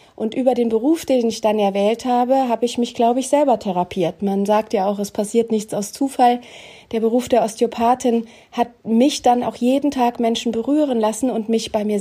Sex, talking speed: female, 210 wpm